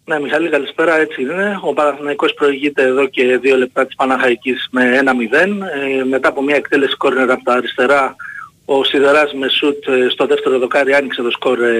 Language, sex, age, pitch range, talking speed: Greek, male, 30-49, 130-170 Hz, 180 wpm